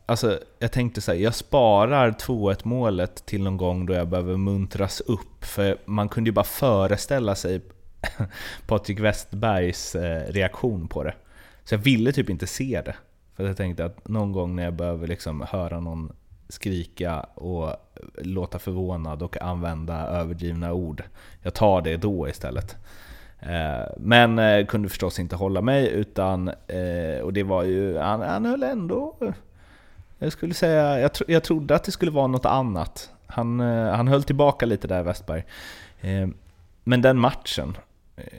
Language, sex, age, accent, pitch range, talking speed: Swedish, male, 30-49, native, 90-115 Hz, 155 wpm